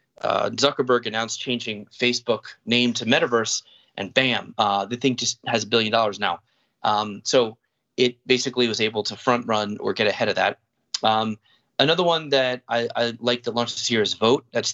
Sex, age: male, 30-49